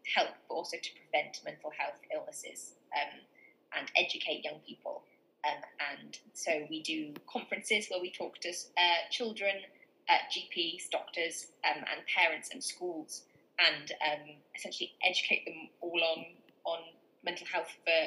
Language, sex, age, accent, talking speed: English, female, 20-39, British, 145 wpm